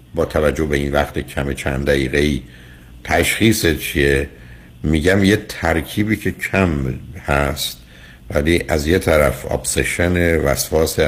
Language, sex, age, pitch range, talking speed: Persian, male, 60-79, 65-80 Hz, 125 wpm